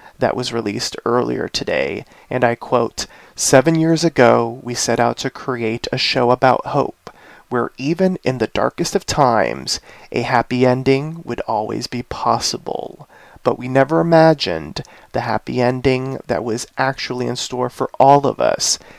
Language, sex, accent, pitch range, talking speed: English, male, American, 120-140 Hz, 160 wpm